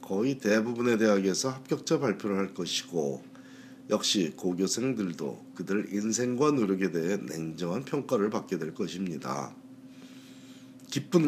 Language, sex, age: Korean, male, 40-59